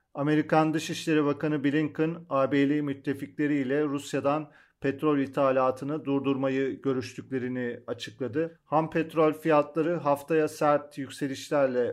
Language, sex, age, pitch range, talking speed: Turkish, male, 40-59, 135-155 Hz, 95 wpm